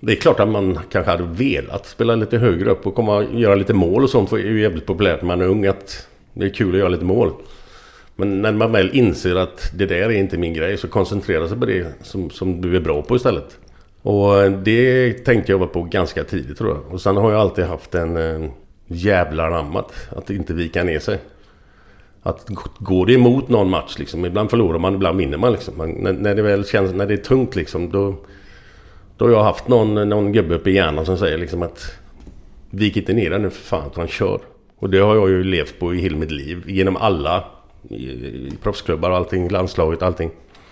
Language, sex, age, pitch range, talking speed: Swedish, male, 50-69, 90-105 Hz, 230 wpm